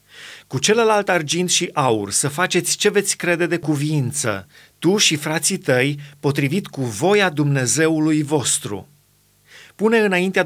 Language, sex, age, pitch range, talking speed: Romanian, male, 30-49, 140-175 Hz, 130 wpm